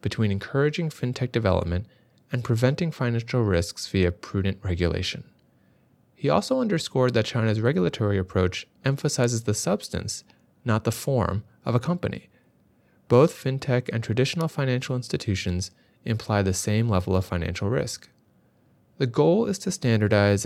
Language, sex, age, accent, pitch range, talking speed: English, male, 30-49, American, 95-130 Hz, 130 wpm